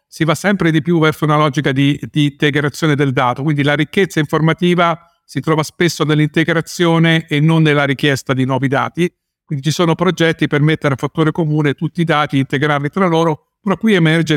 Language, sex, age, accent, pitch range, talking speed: Italian, male, 50-69, native, 135-165 Hz, 190 wpm